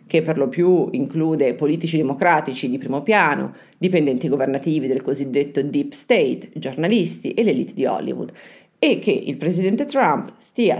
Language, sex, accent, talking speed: Italian, female, native, 150 wpm